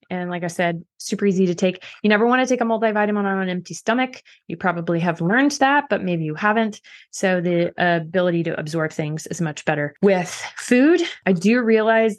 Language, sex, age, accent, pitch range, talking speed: English, female, 20-39, American, 165-210 Hz, 205 wpm